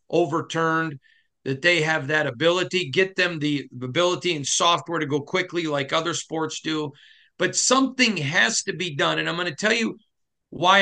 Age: 40-59